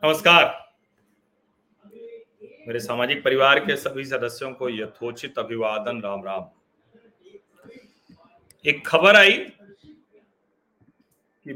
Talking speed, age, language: 85 wpm, 40-59, Hindi